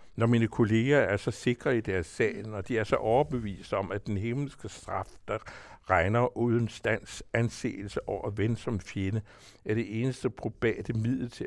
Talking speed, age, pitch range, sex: 180 wpm, 60-79, 95-120 Hz, male